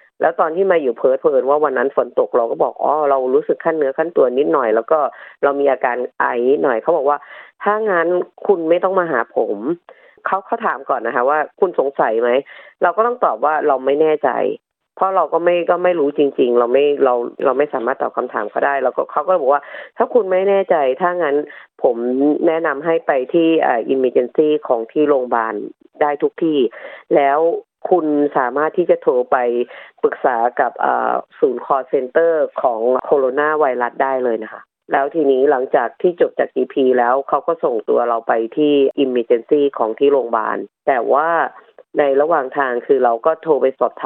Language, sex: Thai, female